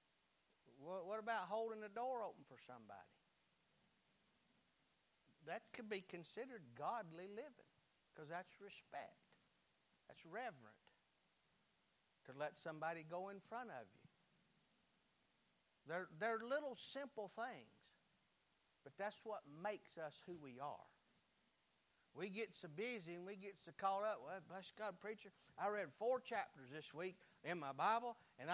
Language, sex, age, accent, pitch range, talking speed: English, male, 60-79, American, 160-215 Hz, 135 wpm